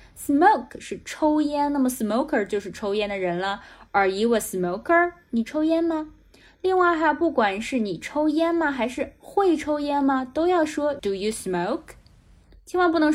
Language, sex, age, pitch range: Chinese, female, 10-29, 205-305 Hz